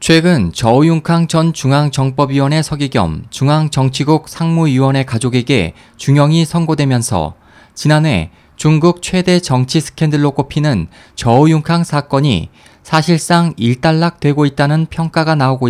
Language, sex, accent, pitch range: Korean, male, native, 125-165 Hz